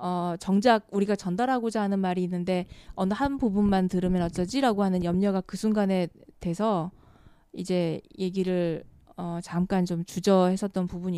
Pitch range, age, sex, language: 180-215 Hz, 20-39, female, Korean